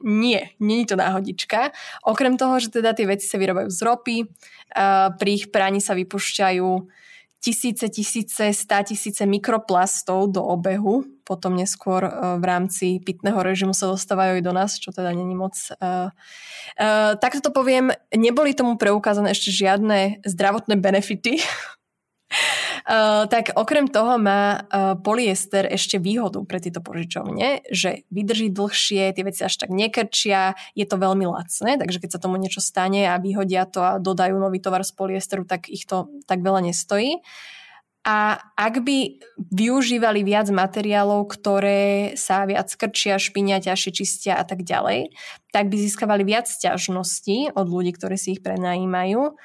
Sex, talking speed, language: female, 150 wpm, Slovak